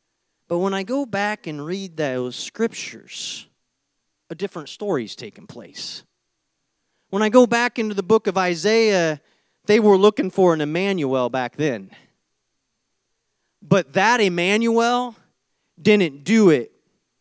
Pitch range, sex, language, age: 195-260 Hz, male, English, 30-49